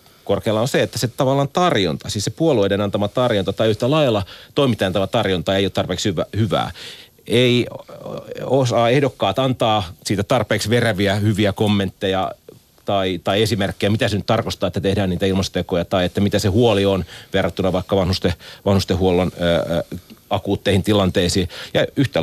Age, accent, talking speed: 30-49, native, 150 wpm